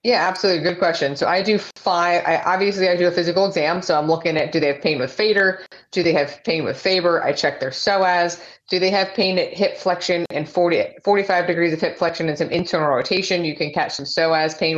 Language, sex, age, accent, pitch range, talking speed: English, female, 30-49, American, 155-180 Hz, 240 wpm